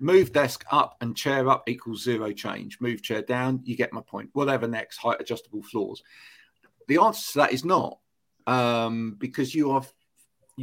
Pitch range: 115-135 Hz